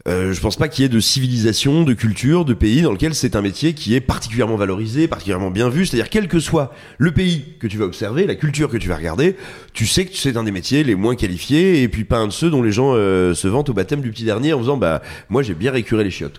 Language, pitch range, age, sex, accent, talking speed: French, 100-145 Hz, 30-49, male, French, 280 wpm